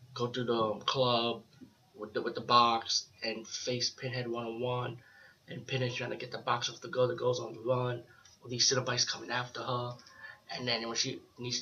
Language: English